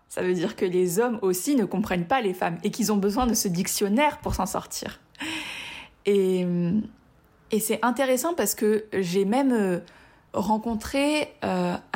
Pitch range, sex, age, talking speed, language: 195-245 Hz, female, 20-39, 160 wpm, French